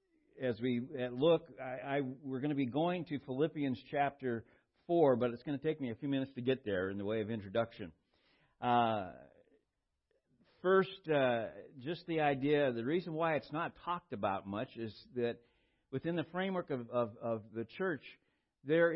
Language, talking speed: English, 175 wpm